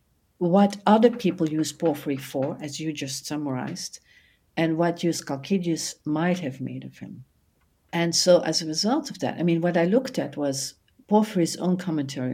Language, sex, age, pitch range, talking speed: English, female, 60-79, 140-180 Hz, 175 wpm